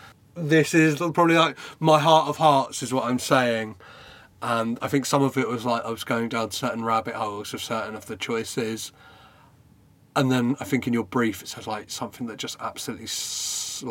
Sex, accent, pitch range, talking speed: male, British, 115-150 Hz, 205 wpm